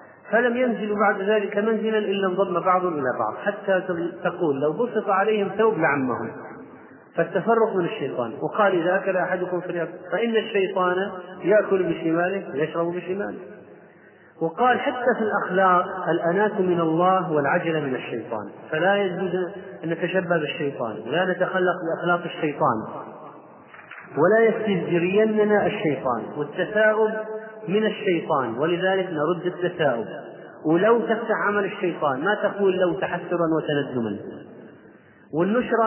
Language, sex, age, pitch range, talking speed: Arabic, male, 30-49, 155-195 Hz, 115 wpm